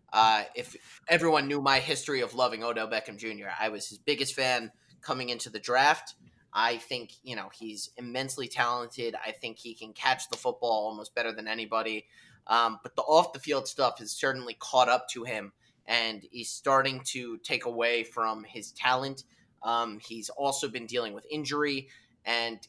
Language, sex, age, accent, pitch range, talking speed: English, male, 20-39, American, 110-130 Hz, 180 wpm